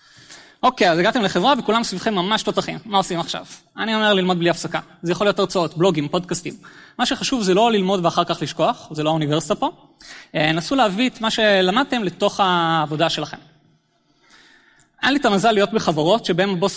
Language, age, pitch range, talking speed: Hebrew, 20-39, 170-230 Hz, 180 wpm